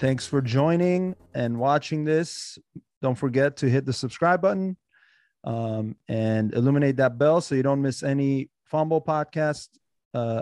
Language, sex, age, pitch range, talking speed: English, male, 30-49, 130-165 Hz, 150 wpm